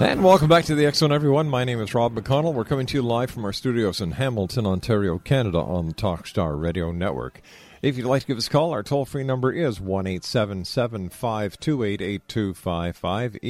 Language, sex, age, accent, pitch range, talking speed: English, male, 50-69, American, 90-130 Hz, 185 wpm